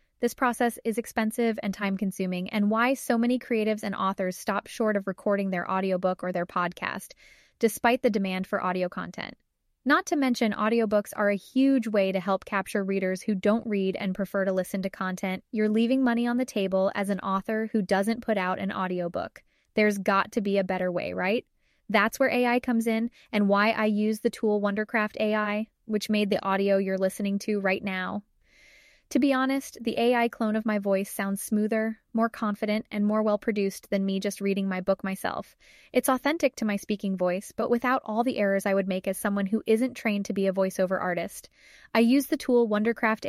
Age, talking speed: 20-39, 200 wpm